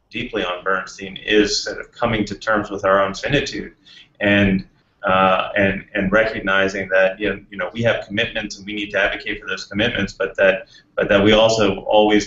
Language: English